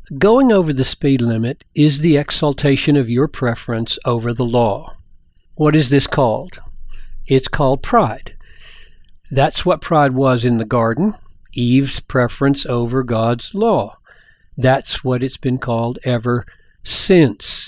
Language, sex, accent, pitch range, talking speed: English, male, American, 120-150 Hz, 135 wpm